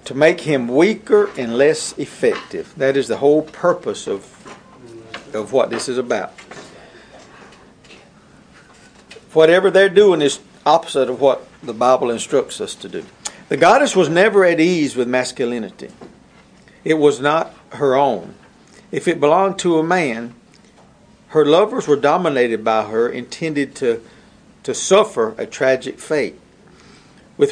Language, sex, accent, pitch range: English, male, American, 130-185 Hz